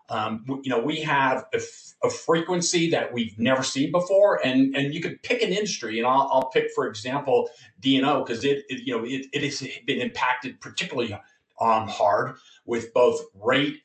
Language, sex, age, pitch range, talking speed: English, male, 40-59, 135-215 Hz, 190 wpm